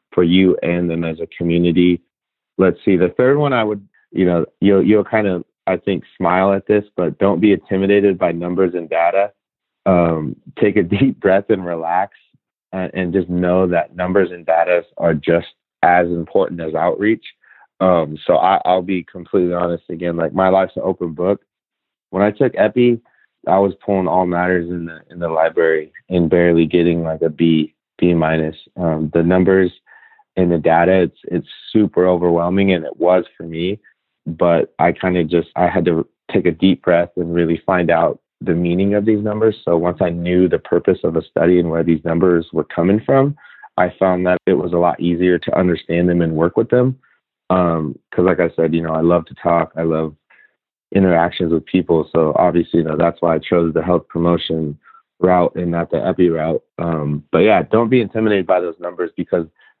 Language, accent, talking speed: English, American, 200 wpm